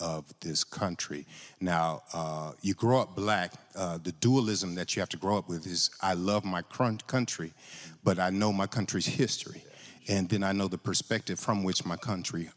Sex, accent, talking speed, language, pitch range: male, American, 190 wpm, English, 95-120 Hz